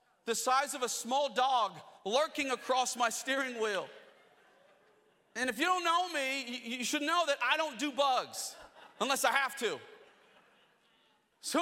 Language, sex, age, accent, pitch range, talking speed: English, male, 40-59, American, 245-305 Hz, 155 wpm